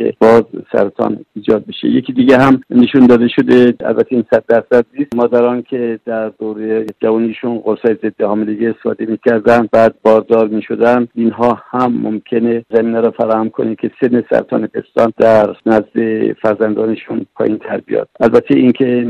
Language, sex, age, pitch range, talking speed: Persian, male, 60-79, 115-130 Hz, 140 wpm